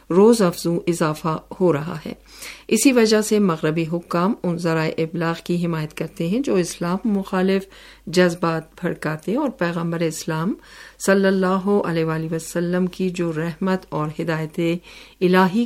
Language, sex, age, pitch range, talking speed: Urdu, female, 50-69, 165-195 Hz, 140 wpm